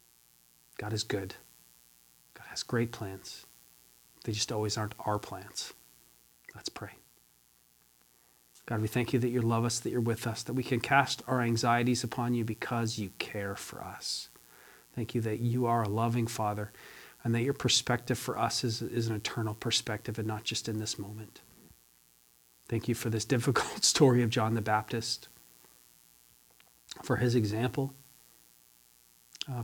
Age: 40-59